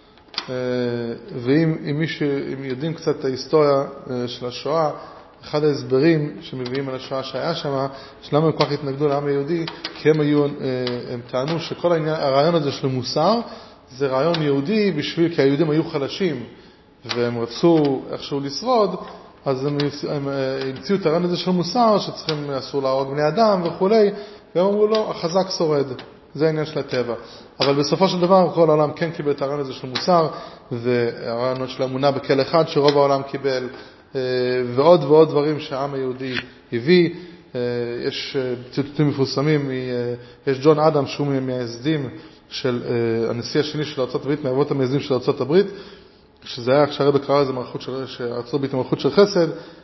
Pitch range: 130-160 Hz